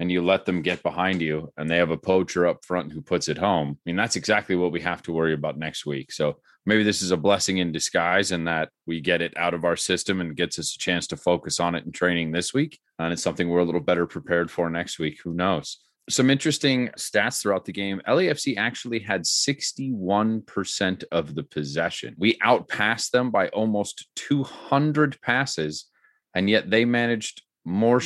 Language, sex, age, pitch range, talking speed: English, male, 30-49, 85-110 Hz, 210 wpm